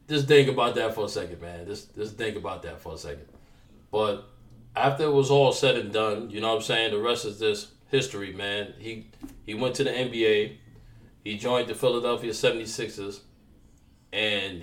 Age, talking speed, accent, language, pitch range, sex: 20-39, 195 wpm, American, English, 100-120 Hz, male